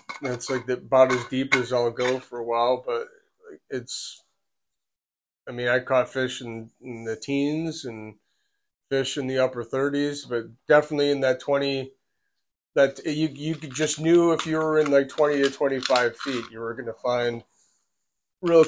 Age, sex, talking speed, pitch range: 30-49, male, 170 wpm, 125-150 Hz